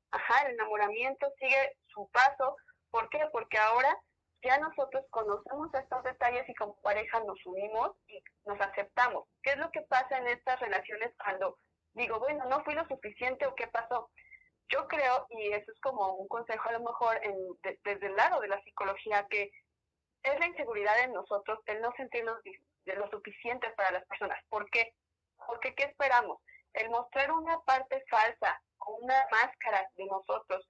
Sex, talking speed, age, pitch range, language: female, 175 wpm, 30-49, 210-270 Hz, Spanish